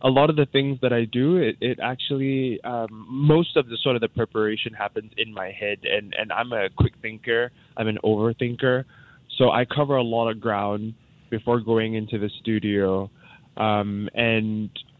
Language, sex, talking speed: English, male, 185 wpm